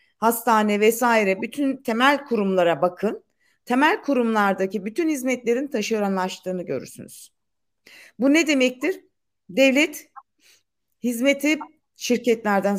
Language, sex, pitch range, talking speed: Turkish, female, 205-265 Hz, 85 wpm